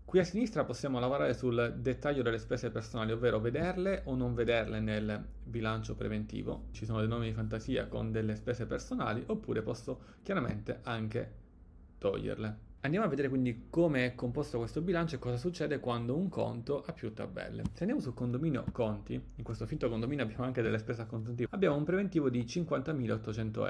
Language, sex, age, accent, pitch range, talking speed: Italian, male, 30-49, native, 115-145 Hz, 175 wpm